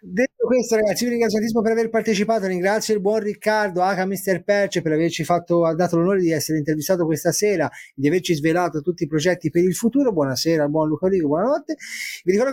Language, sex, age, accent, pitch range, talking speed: Italian, male, 30-49, native, 165-230 Hz, 205 wpm